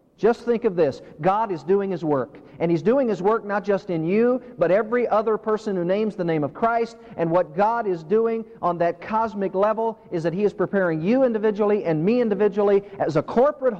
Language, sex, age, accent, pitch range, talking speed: English, male, 40-59, American, 155-220 Hz, 220 wpm